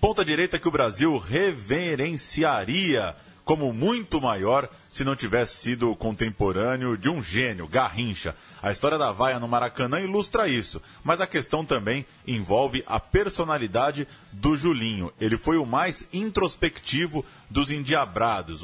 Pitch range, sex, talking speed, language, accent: 110-155 Hz, male, 135 wpm, Portuguese, Brazilian